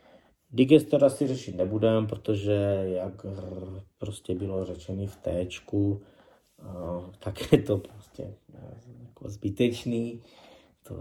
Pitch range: 95-115 Hz